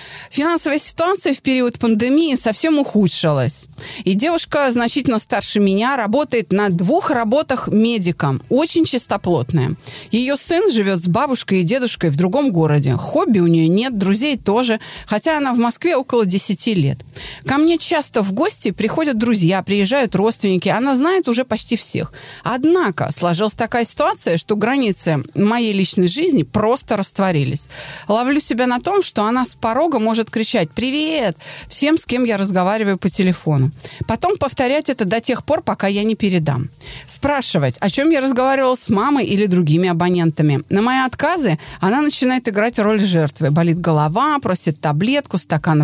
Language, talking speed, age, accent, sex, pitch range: Russian, 155 wpm, 30-49, native, female, 180-265 Hz